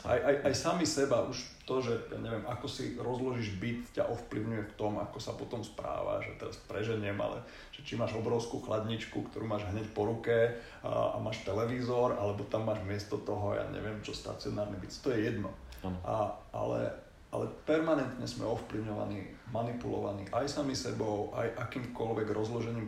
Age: 30-49